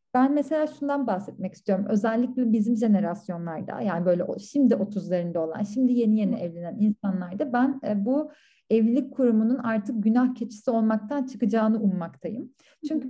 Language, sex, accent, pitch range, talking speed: Turkish, female, native, 205-265 Hz, 135 wpm